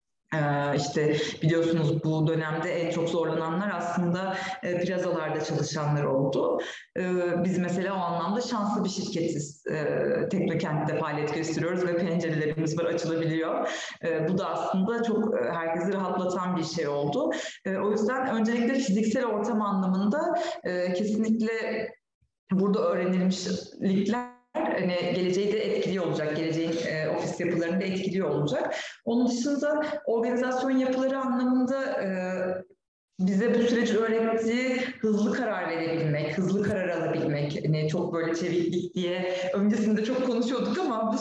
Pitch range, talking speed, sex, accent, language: 170-225 Hz, 120 wpm, female, native, Turkish